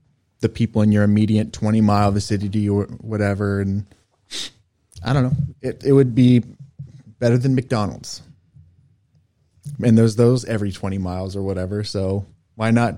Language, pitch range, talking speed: English, 100-130 Hz, 150 wpm